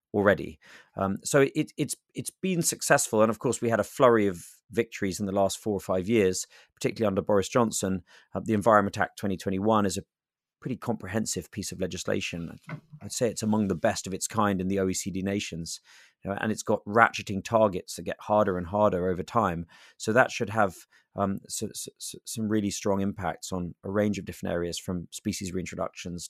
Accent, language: British, English